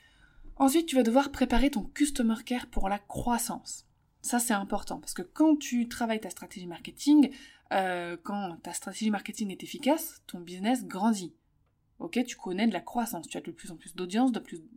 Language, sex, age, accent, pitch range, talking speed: French, female, 20-39, French, 200-260 Hz, 185 wpm